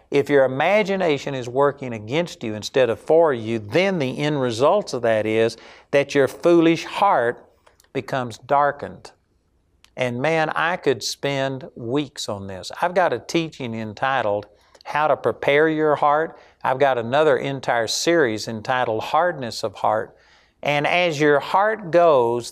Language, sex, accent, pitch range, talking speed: English, male, American, 120-165 Hz, 150 wpm